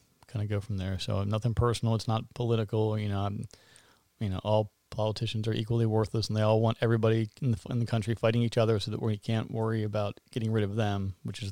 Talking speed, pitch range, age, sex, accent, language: 245 wpm, 110-130 Hz, 40-59, male, American, English